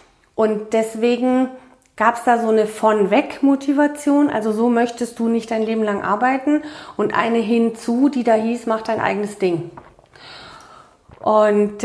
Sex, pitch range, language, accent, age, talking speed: female, 200-230 Hz, German, German, 40-59, 150 wpm